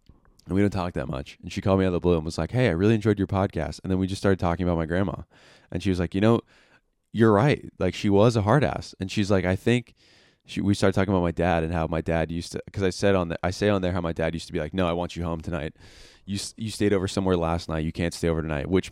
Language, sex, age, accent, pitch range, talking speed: English, male, 20-39, American, 80-105 Hz, 305 wpm